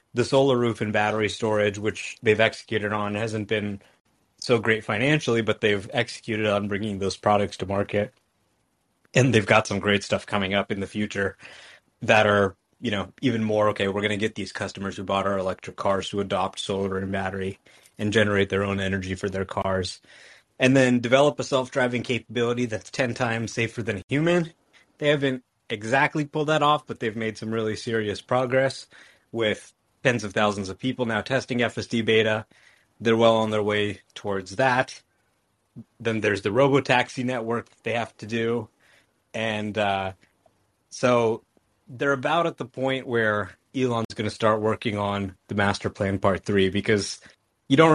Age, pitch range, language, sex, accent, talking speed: 30-49, 100-120 Hz, English, male, American, 180 wpm